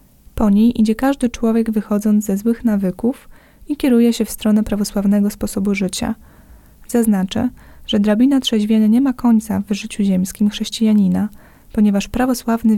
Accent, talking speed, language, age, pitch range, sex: native, 140 wpm, Polish, 20-39, 205-235 Hz, female